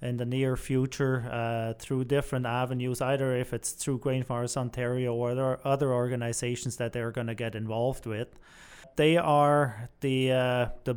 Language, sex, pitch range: English, male, 120-140 Hz